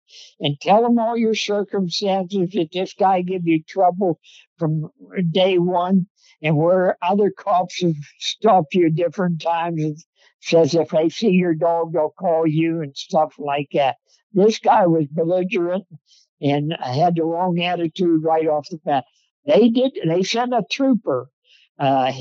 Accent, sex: American, male